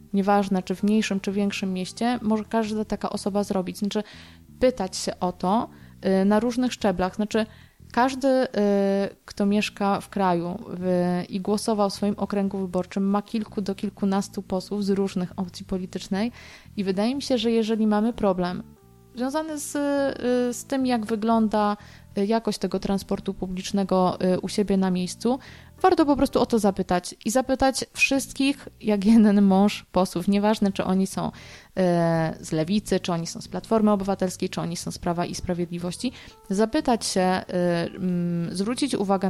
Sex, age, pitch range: female, 20-39, 185-225 Hz